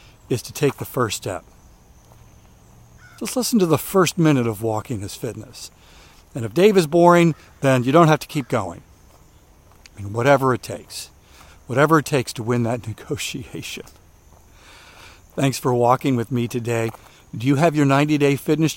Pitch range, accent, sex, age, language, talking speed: 115-150 Hz, American, male, 50-69, English, 165 wpm